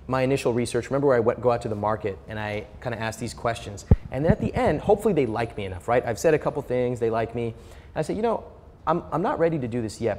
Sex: male